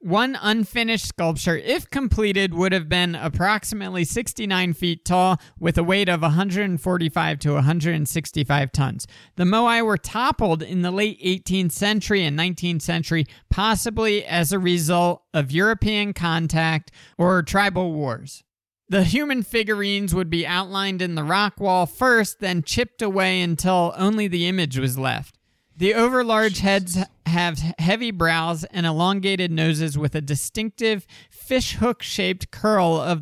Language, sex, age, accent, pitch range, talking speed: English, male, 40-59, American, 160-205 Hz, 140 wpm